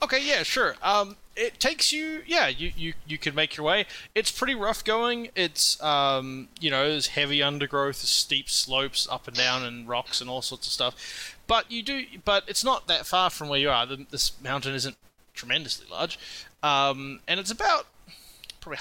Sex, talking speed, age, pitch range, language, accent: male, 190 wpm, 20-39, 130-170 Hz, English, Australian